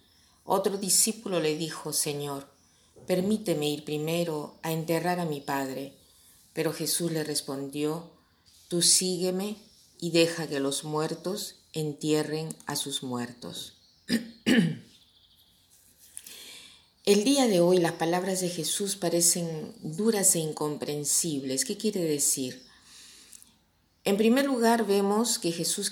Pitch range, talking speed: 145-185 Hz, 115 wpm